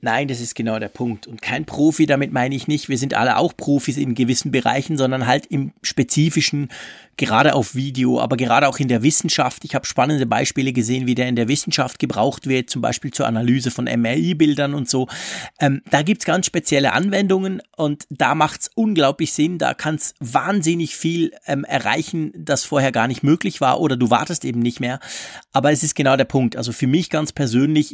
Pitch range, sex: 125-160 Hz, male